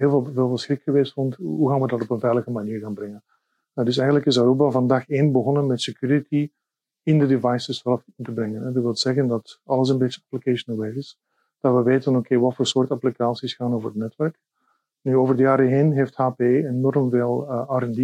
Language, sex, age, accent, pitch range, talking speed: Dutch, male, 50-69, Dutch, 120-140 Hz, 215 wpm